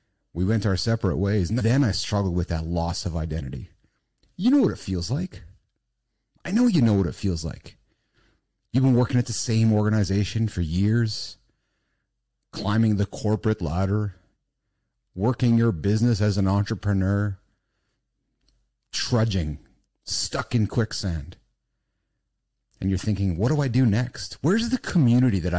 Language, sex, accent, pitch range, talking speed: English, male, American, 95-125 Hz, 150 wpm